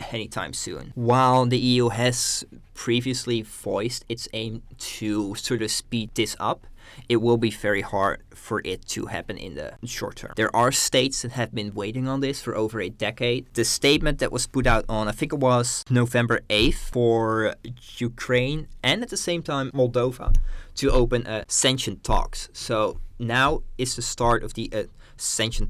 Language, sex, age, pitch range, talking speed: English, male, 20-39, 110-130 Hz, 180 wpm